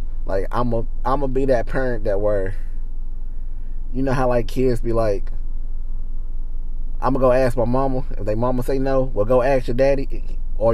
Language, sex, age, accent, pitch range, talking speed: English, male, 20-39, American, 85-130 Hz, 195 wpm